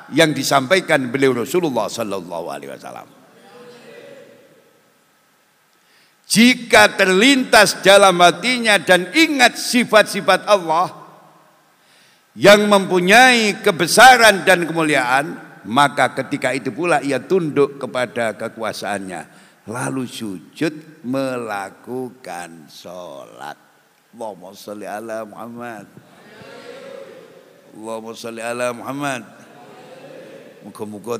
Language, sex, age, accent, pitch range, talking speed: Indonesian, male, 60-79, native, 120-190 Hz, 75 wpm